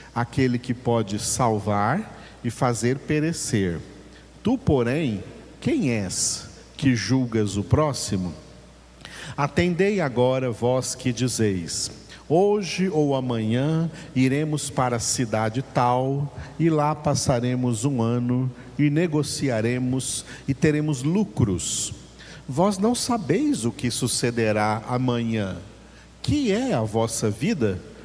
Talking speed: 105 wpm